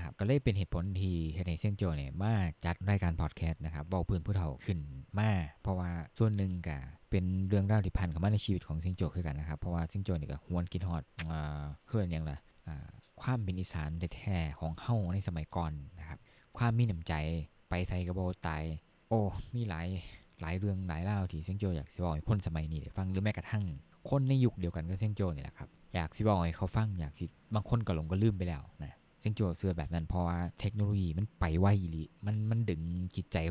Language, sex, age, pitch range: Thai, male, 20-39, 80-100 Hz